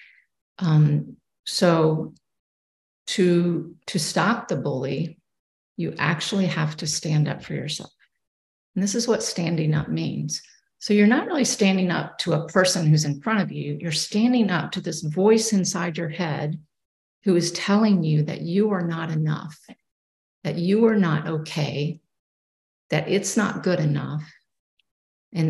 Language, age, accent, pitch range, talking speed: English, 50-69, American, 155-195 Hz, 155 wpm